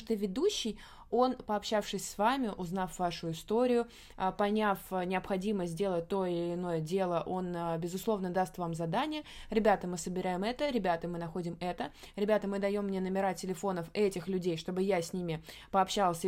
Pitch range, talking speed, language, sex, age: 180-215 Hz, 160 wpm, Russian, female, 20-39